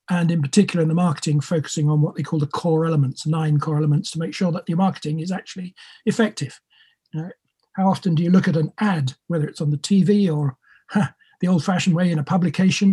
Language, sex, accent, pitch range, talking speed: English, male, British, 155-225 Hz, 225 wpm